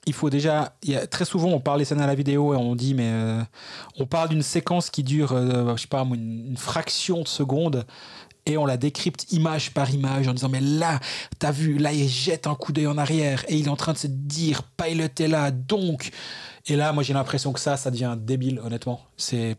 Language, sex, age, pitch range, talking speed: French, male, 30-49, 130-160 Hz, 240 wpm